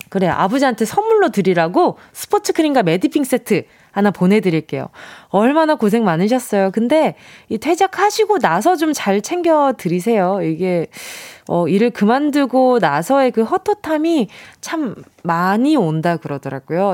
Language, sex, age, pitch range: Korean, female, 20-39, 185-285 Hz